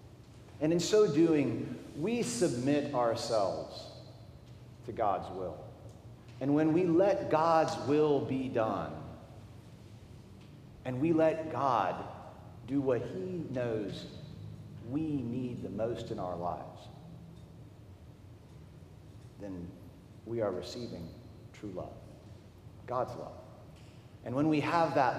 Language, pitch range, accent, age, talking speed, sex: English, 110-145 Hz, American, 40-59, 110 wpm, male